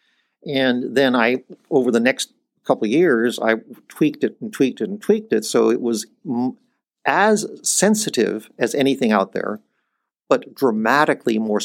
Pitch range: 120-175 Hz